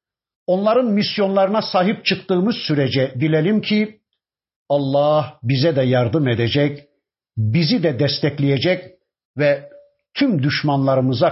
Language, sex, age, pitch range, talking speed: Turkish, male, 50-69, 130-175 Hz, 95 wpm